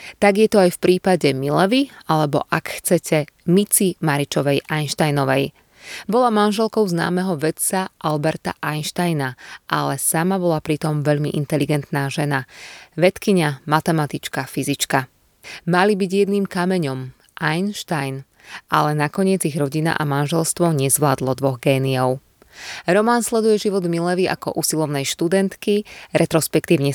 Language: Slovak